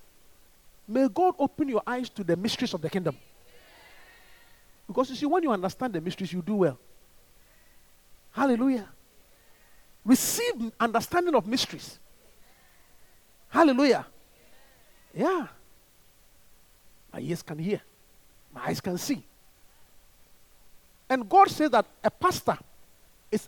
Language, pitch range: English, 180-255 Hz